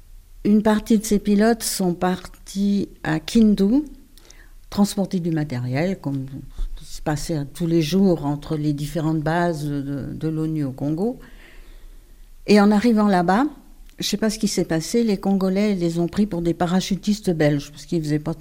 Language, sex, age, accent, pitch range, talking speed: French, female, 60-79, French, 150-185 Hz, 175 wpm